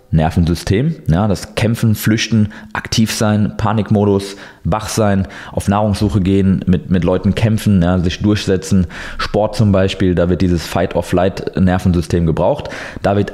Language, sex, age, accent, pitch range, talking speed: German, male, 20-39, German, 90-110 Hz, 150 wpm